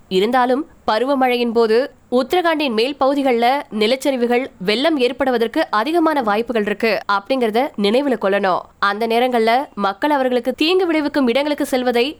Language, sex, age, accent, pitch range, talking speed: Tamil, female, 20-39, native, 230-285 Hz, 115 wpm